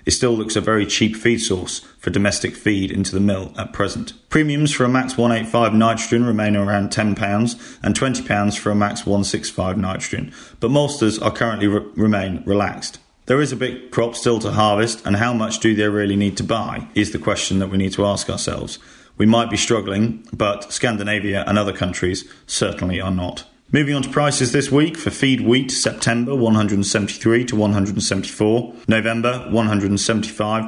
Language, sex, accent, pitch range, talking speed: English, male, British, 100-115 Hz, 180 wpm